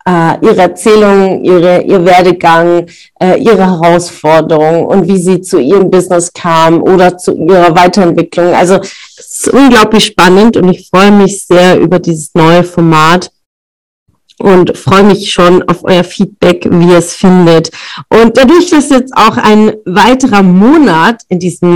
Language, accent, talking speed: German, German, 150 wpm